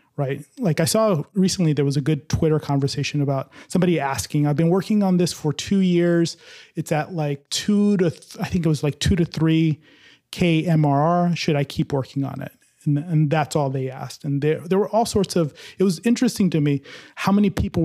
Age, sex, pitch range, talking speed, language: 30-49, male, 145-180 Hz, 210 wpm, English